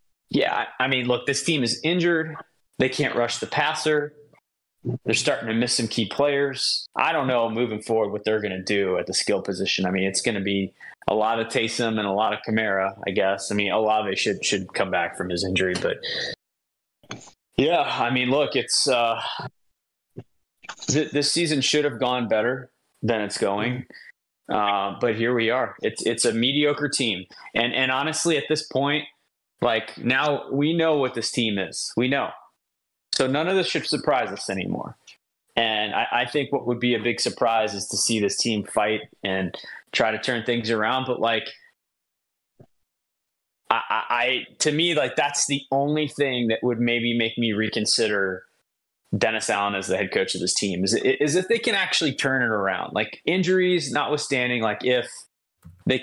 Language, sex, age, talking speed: English, male, 20-39, 190 wpm